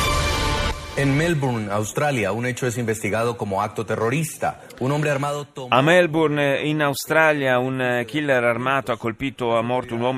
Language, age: Italian, 30-49